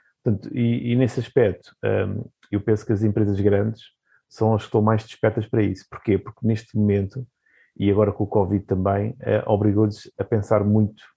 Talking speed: 190 wpm